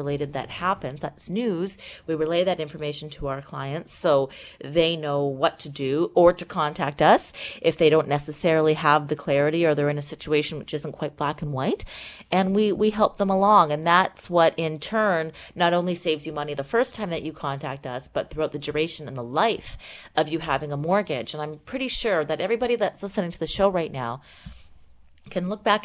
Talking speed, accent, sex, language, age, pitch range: 210 wpm, American, female, English, 30-49, 150-180 Hz